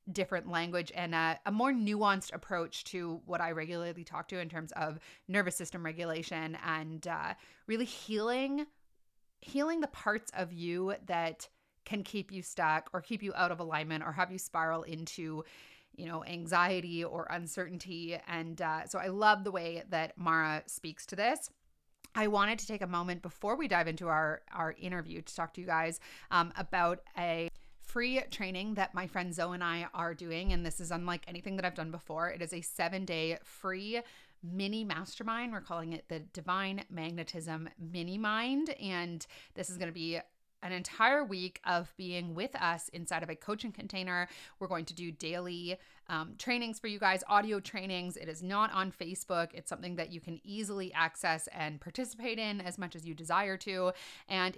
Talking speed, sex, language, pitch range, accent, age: 185 wpm, female, English, 165-195 Hz, American, 30-49